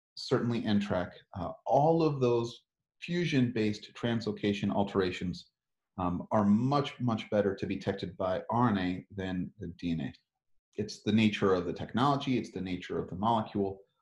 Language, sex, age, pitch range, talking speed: English, male, 30-49, 95-120 Hz, 150 wpm